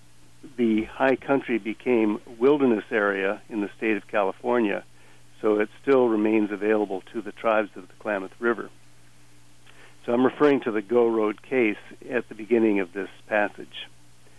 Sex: male